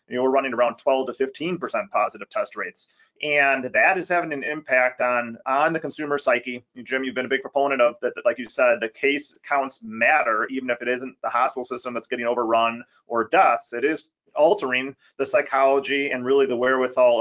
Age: 30-49